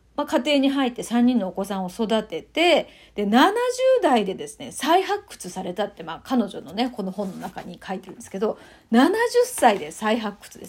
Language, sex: Japanese, female